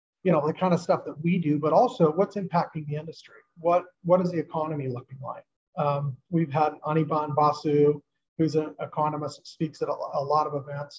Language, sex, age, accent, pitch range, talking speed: English, male, 40-59, American, 145-170 Hz, 195 wpm